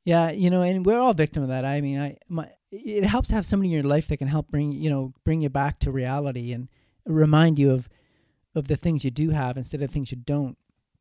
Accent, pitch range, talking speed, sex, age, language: American, 130-155 Hz, 255 wpm, male, 30-49, English